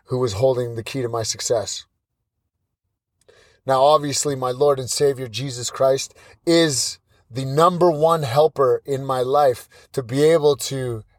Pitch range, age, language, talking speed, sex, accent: 100-145 Hz, 30-49, English, 150 wpm, male, American